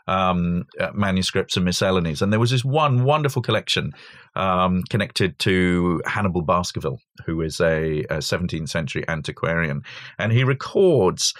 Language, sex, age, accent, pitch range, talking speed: English, male, 40-59, British, 90-120 Hz, 140 wpm